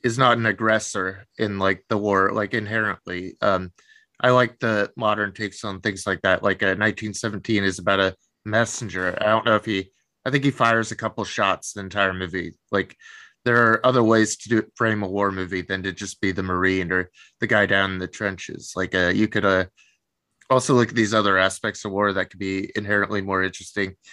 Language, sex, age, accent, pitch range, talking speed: English, male, 20-39, American, 95-110 Hz, 210 wpm